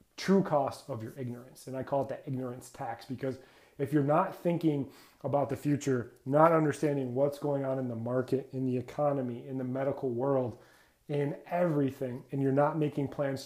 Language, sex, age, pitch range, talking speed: English, male, 30-49, 125-145 Hz, 185 wpm